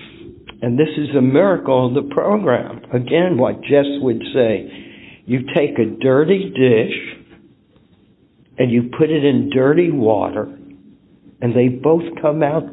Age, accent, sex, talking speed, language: 60-79, American, male, 140 wpm, English